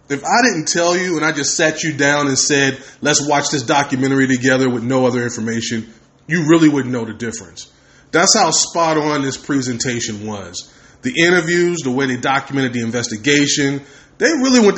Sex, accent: male, American